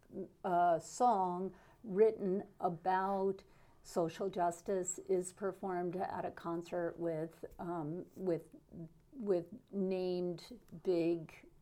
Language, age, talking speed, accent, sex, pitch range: English, 50-69, 95 wpm, American, female, 170-205 Hz